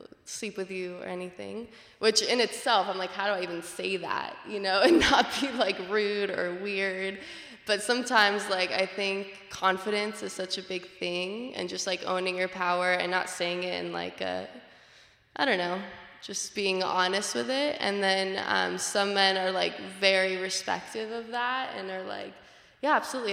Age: 20-39